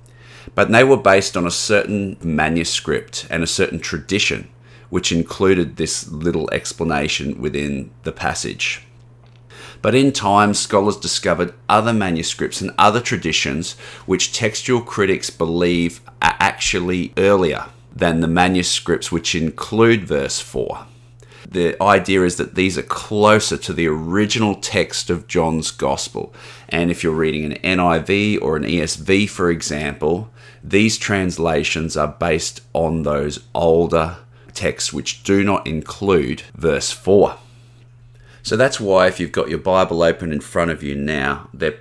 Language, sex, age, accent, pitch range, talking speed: English, male, 30-49, Australian, 80-115 Hz, 140 wpm